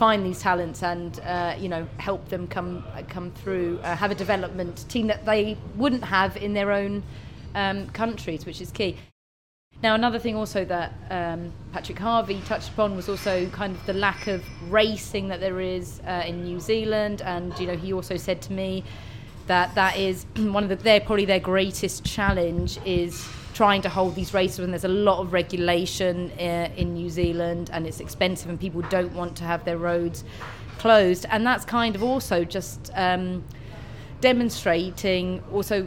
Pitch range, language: 175-200 Hz, English